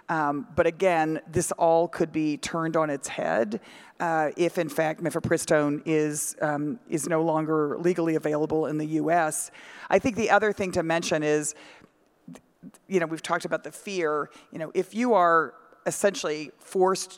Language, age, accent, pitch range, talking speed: English, 40-59, American, 155-180 Hz, 165 wpm